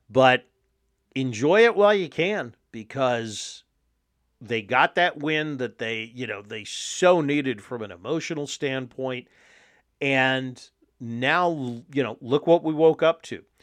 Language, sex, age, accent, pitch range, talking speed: English, male, 40-59, American, 125-160 Hz, 140 wpm